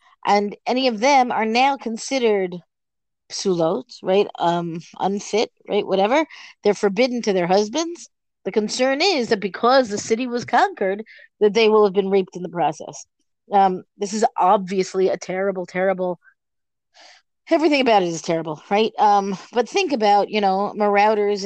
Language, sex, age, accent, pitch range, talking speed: English, female, 30-49, American, 190-260 Hz, 155 wpm